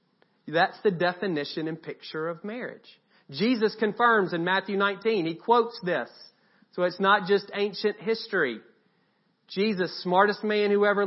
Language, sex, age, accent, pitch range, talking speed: English, male, 40-59, American, 145-200 Hz, 140 wpm